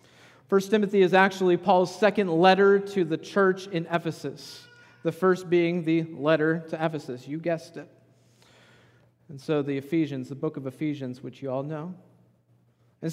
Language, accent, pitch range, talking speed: English, American, 140-200 Hz, 160 wpm